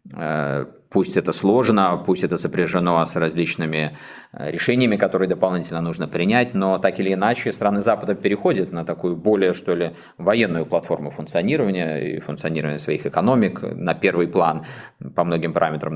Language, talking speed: Russian, 145 wpm